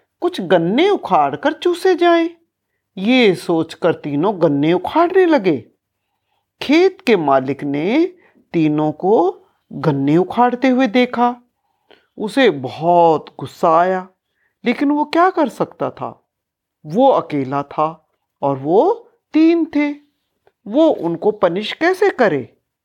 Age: 50-69